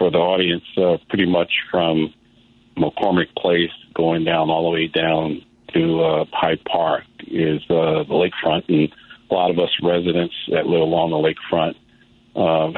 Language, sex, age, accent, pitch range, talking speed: English, male, 50-69, American, 75-85 Hz, 165 wpm